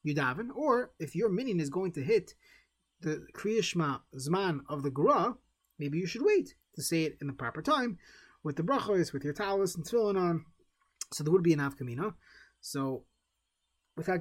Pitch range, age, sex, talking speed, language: 140-185 Hz, 20-39, male, 185 wpm, English